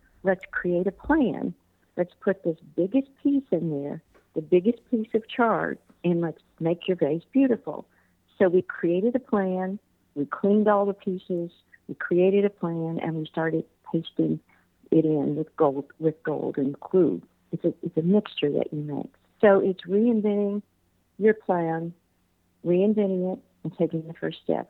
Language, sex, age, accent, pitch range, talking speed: English, female, 50-69, American, 165-210 Hz, 160 wpm